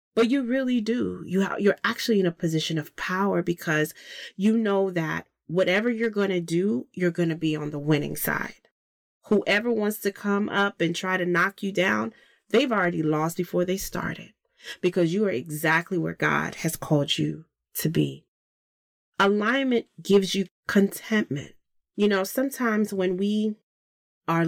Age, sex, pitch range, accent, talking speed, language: 30-49, female, 165-205 Hz, American, 160 wpm, English